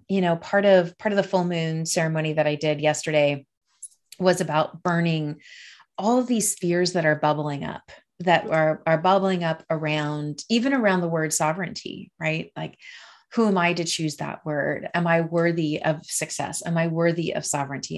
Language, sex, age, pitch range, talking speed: English, female, 30-49, 155-195 Hz, 185 wpm